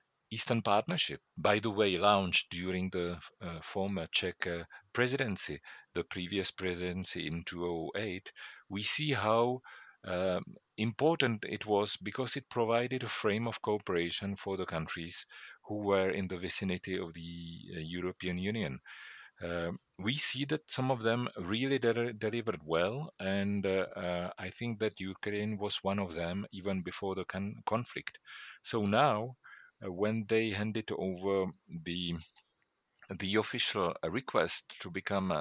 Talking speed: 140 wpm